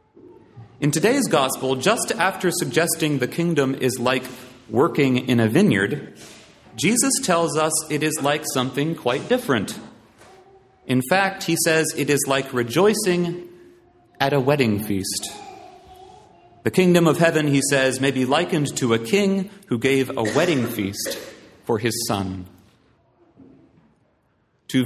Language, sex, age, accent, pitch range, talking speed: English, male, 30-49, American, 130-195 Hz, 135 wpm